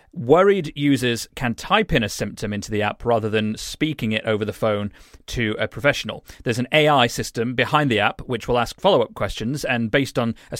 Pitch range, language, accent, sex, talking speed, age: 110-130 Hz, English, British, male, 205 wpm, 30-49